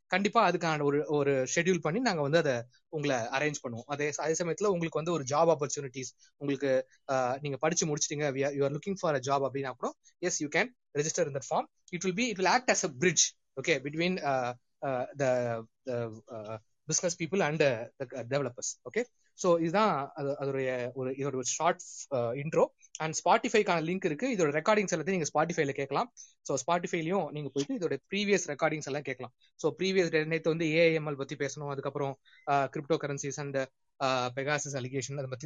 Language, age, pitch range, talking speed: Tamil, 20-39, 135-185 Hz, 155 wpm